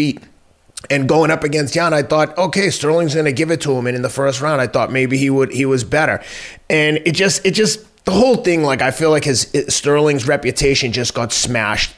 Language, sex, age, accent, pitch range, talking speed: English, male, 30-49, American, 120-155 Hz, 235 wpm